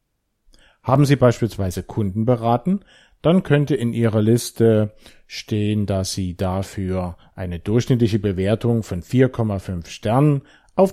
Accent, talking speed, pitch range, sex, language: German, 115 wpm, 95-125 Hz, male, German